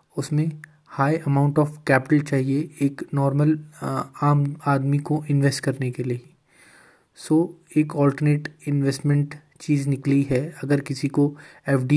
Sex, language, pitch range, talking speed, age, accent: male, Hindi, 135-150 Hz, 135 wpm, 20-39, native